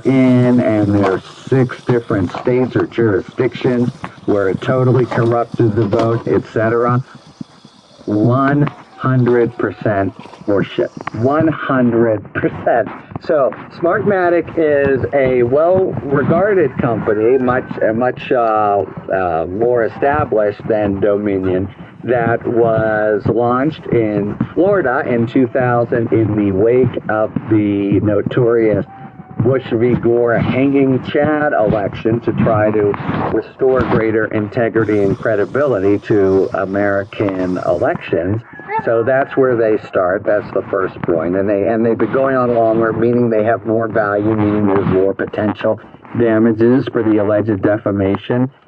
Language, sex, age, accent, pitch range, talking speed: English, male, 50-69, American, 105-130 Hz, 120 wpm